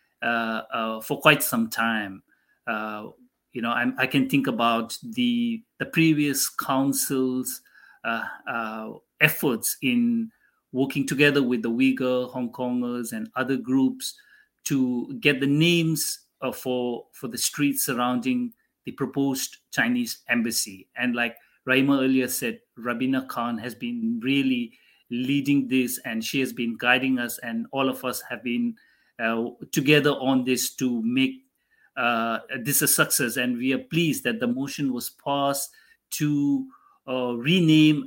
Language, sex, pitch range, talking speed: English, male, 125-155 Hz, 145 wpm